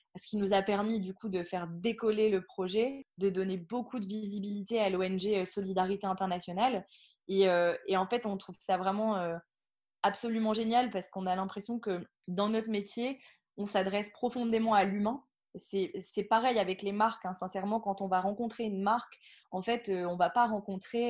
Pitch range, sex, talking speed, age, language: 190-225 Hz, female, 195 wpm, 20-39, French